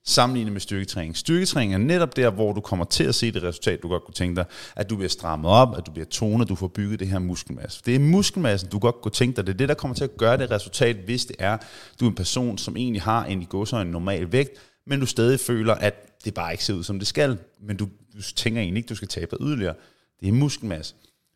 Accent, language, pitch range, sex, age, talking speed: native, Danish, 95-125 Hz, male, 30-49, 275 wpm